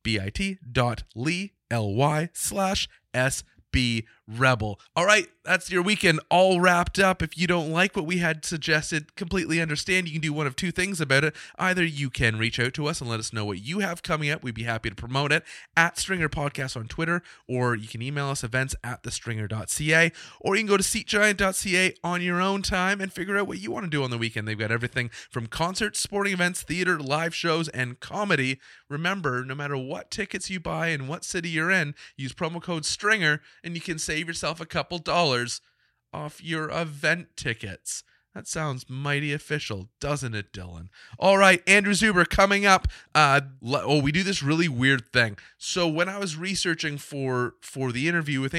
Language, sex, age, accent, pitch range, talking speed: English, male, 30-49, American, 130-180 Hz, 200 wpm